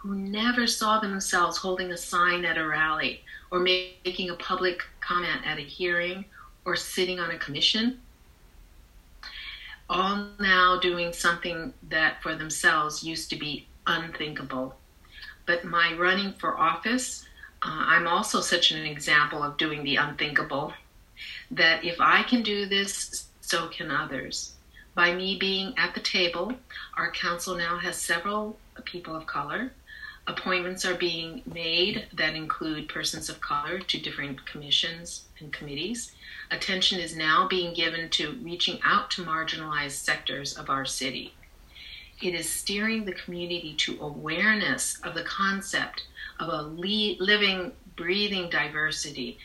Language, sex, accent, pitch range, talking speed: English, female, American, 155-190 Hz, 140 wpm